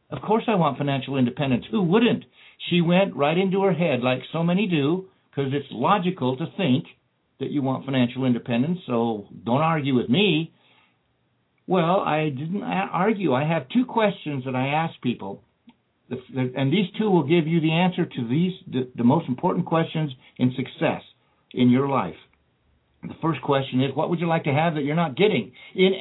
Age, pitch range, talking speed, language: 60-79, 130-180 Hz, 180 wpm, English